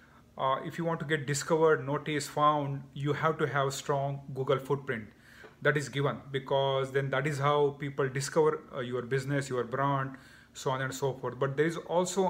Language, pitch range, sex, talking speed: English, 130-155 Hz, male, 195 wpm